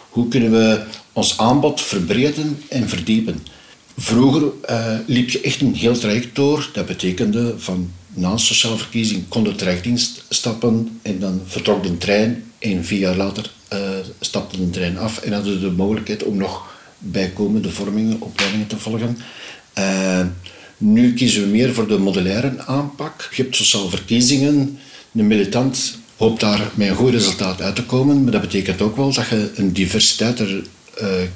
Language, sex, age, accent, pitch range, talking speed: Dutch, male, 60-79, Dutch, 100-125 Hz, 170 wpm